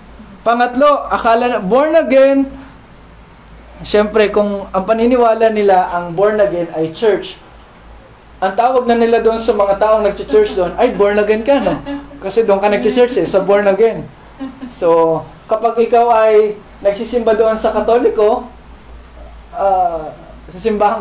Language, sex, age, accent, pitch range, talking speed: Filipino, male, 20-39, native, 195-260 Hz, 145 wpm